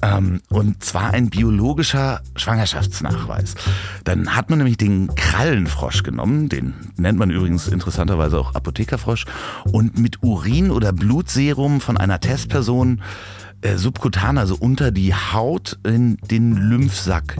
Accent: German